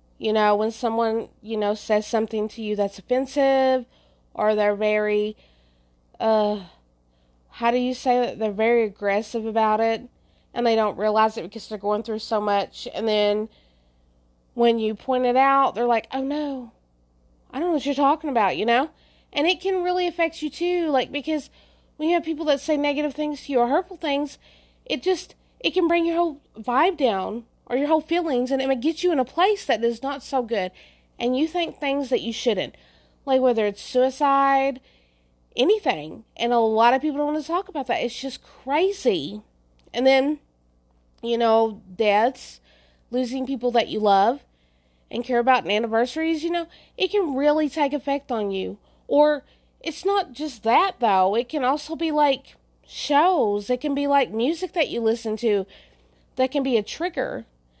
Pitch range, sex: 215-290 Hz, female